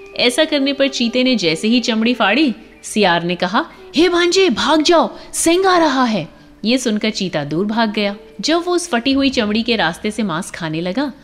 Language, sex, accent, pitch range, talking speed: Hindi, female, native, 180-275 Hz, 200 wpm